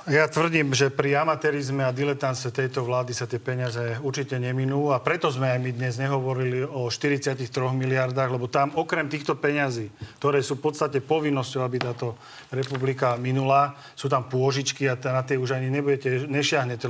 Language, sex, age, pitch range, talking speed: Slovak, male, 40-59, 130-150 Hz, 165 wpm